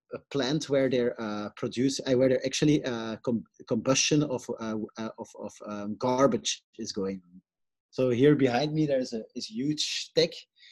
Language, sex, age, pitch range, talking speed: English, male, 30-49, 115-145 Hz, 185 wpm